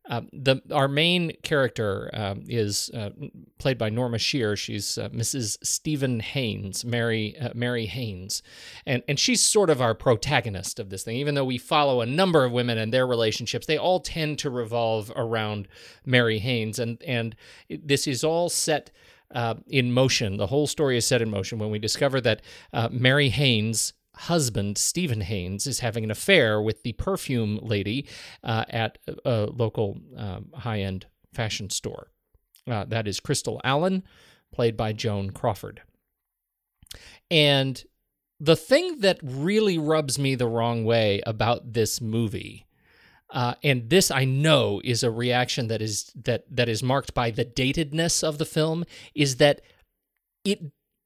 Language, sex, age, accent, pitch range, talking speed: English, male, 40-59, American, 110-145 Hz, 165 wpm